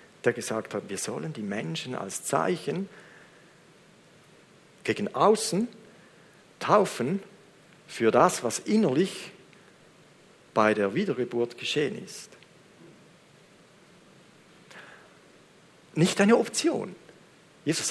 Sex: male